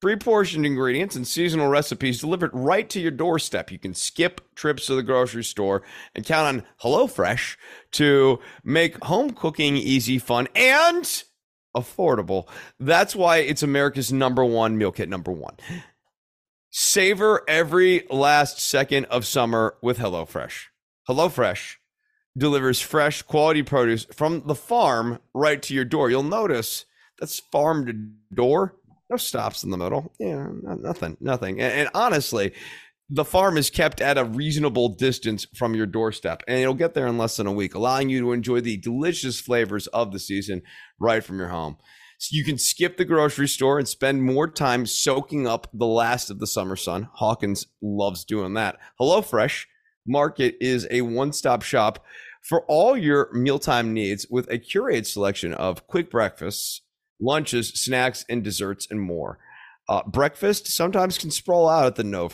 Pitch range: 115-155 Hz